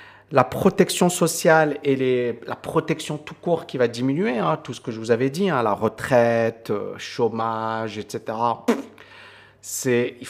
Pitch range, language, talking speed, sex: 125-165 Hz, French, 165 wpm, male